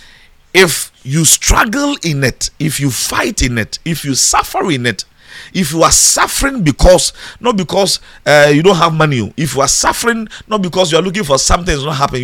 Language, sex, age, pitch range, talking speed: English, male, 50-69, 135-205 Hz, 200 wpm